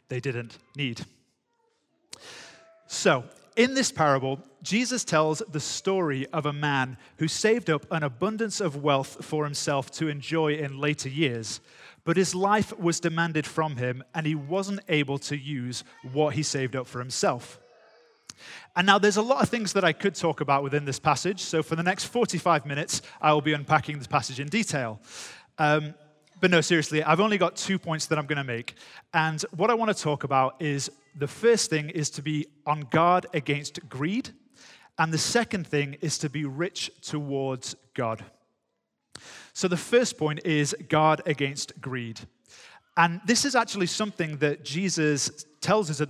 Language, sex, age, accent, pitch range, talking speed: English, male, 30-49, British, 140-185 Hz, 175 wpm